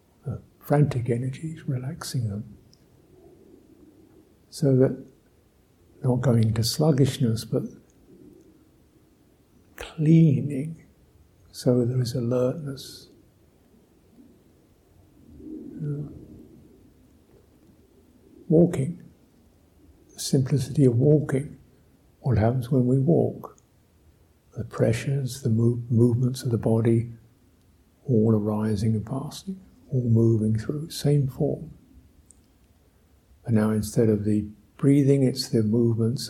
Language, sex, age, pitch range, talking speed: English, male, 60-79, 110-140 Hz, 85 wpm